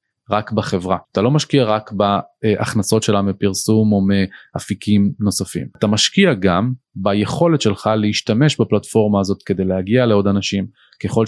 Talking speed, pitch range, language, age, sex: 135 wpm, 100-115 Hz, Hebrew, 20-39, male